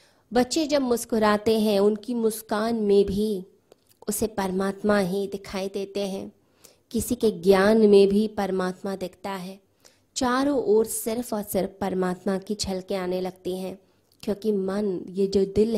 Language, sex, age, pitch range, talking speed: Hindi, female, 20-39, 195-225 Hz, 145 wpm